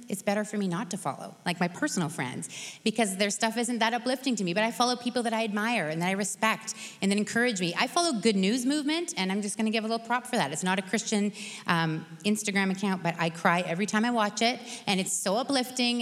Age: 30-49